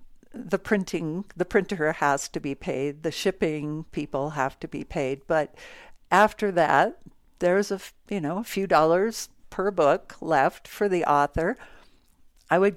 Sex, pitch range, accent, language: female, 150-190 Hz, American, English